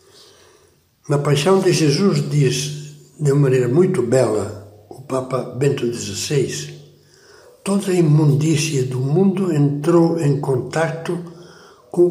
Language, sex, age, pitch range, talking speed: Portuguese, male, 60-79, 125-175 Hz, 115 wpm